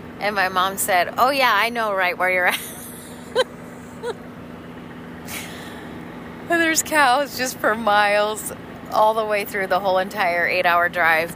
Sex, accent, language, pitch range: female, American, English, 175-215 Hz